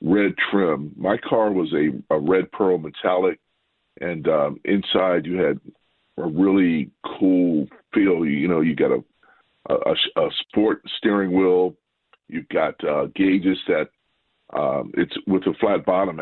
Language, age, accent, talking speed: English, 50-69, American, 150 wpm